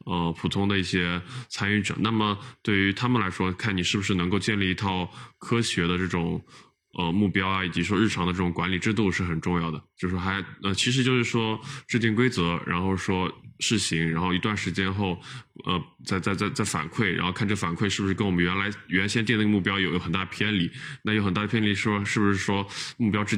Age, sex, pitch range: 20-39, male, 90-110 Hz